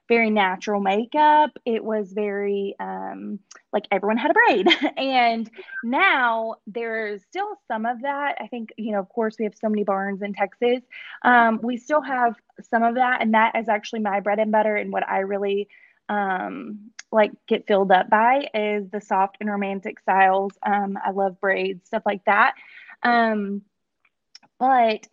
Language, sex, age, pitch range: English, female, 20-39, 205-235 Hz